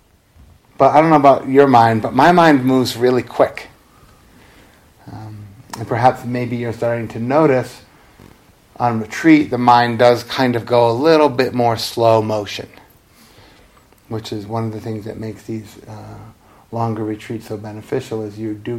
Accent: American